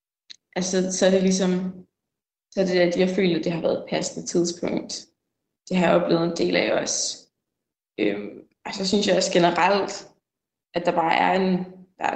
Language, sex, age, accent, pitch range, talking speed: Danish, female, 20-39, native, 165-185 Hz, 190 wpm